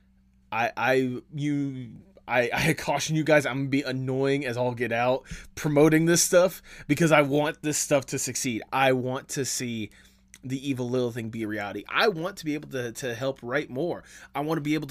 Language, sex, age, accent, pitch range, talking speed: English, male, 20-39, American, 100-145 Hz, 210 wpm